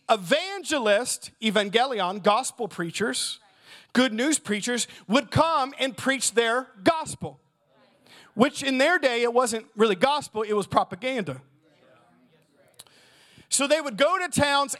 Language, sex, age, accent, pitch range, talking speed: English, male, 40-59, American, 215-290 Hz, 120 wpm